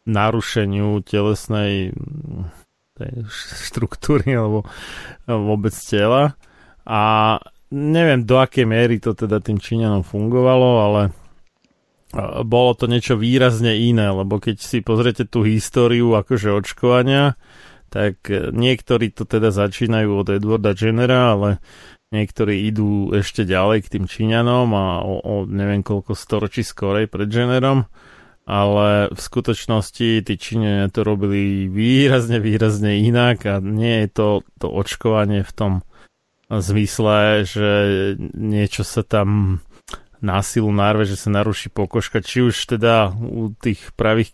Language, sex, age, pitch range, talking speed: Slovak, male, 30-49, 105-120 Hz, 125 wpm